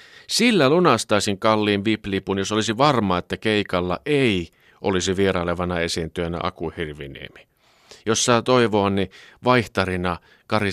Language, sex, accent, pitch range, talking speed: Finnish, male, native, 90-125 Hz, 110 wpm